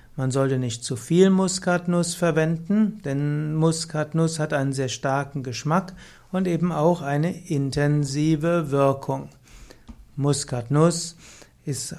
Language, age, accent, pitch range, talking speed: German, 60-79, German, 135-170 Hz, 110 wpm